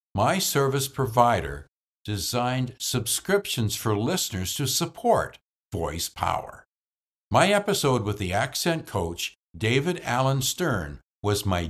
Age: 60-79